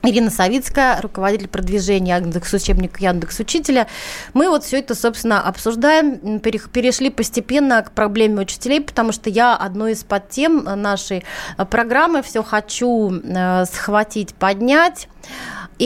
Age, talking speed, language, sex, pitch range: 30-49, 115 wpm, Russian, female, 200-245 Hz